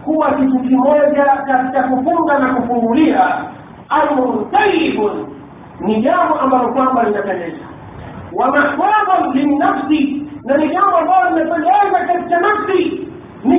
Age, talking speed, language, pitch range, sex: 50-69, 115 wpm, Swahili, 255-340 Hz, male